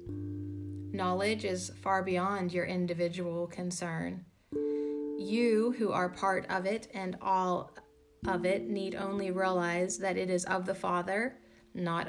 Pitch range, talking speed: 145-195 Hz, 135 wpm